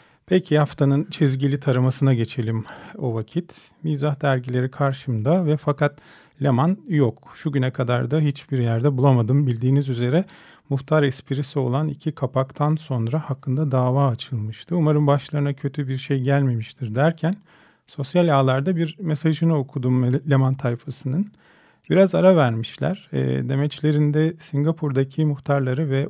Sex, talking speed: male, 125 wpm